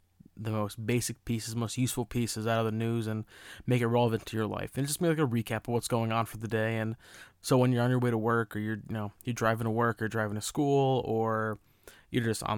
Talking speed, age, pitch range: 265 wpm, 20-39, 105-125 Hz